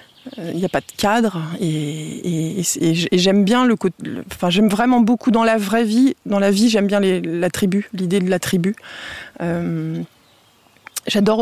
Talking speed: 195 wpm